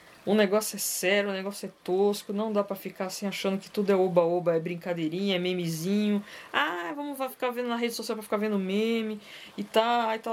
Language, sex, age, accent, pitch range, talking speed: Portuguese, female, 20-39, Brazilian, 170-230 Hz, 225 wpm